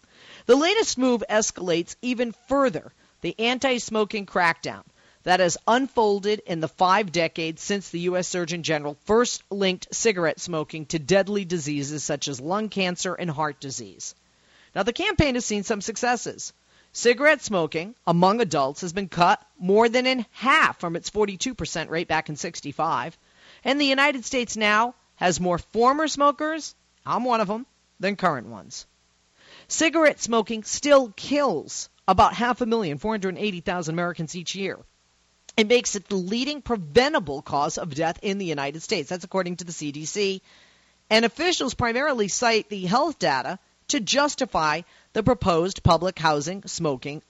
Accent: American